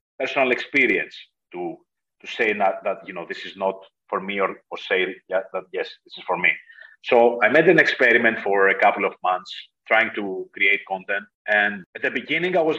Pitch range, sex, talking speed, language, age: 110-150 Hz, male, 210 wpm, English, 30-49